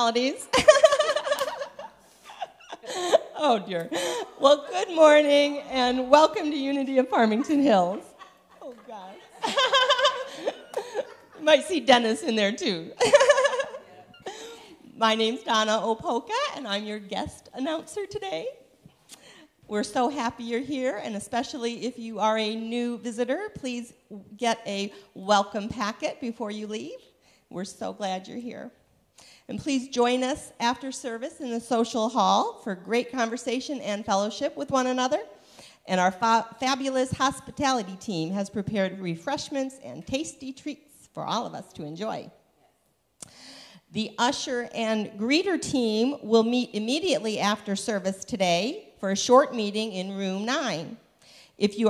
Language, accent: English, American